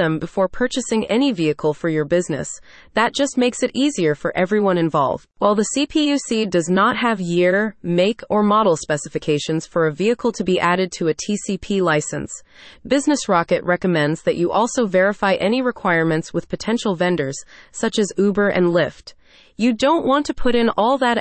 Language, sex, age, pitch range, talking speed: English, female, 30-49, 170-235 Hz, 175 wpm